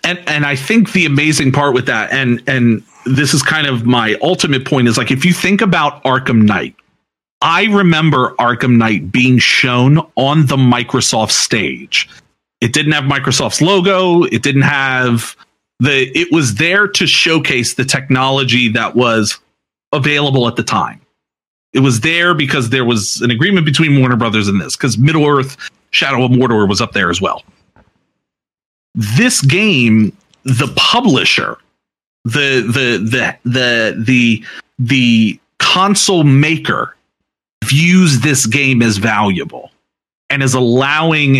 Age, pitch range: 40-59, 120-155 Hz